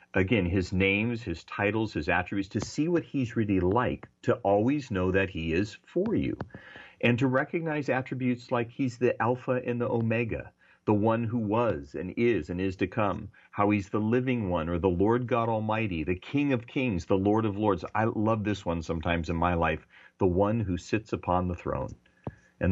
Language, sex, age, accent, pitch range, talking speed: English, male, 40-59, American, 90-120 Hz, 200 wpm